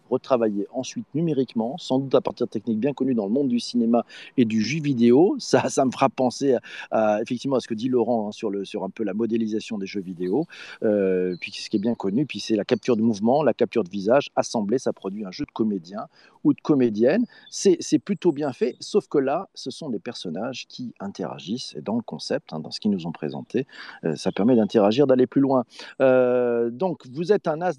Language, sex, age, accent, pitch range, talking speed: French, male, 40-59, French, 120-170 Hz, 235 wpm